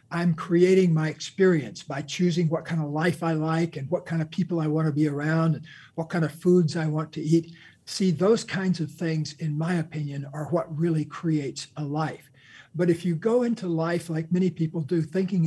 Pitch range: 150-170 Hz